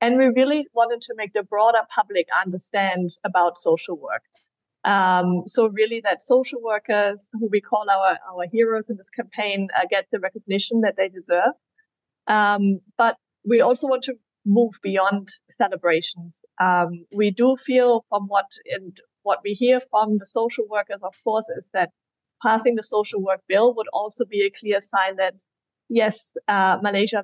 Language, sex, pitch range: English, female, 190-235 Hz